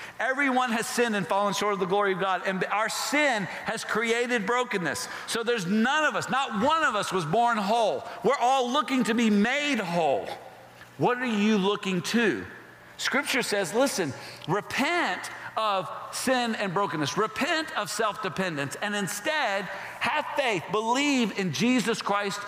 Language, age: English, 50-69